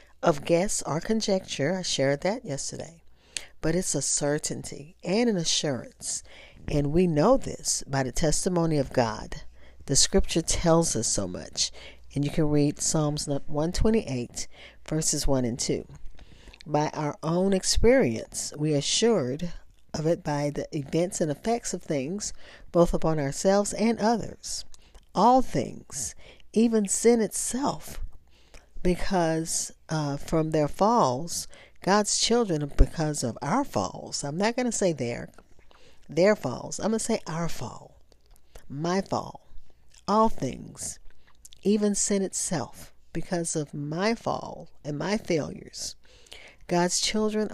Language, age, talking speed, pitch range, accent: English, 50-69, 135 wpm, 145-200 Hz, American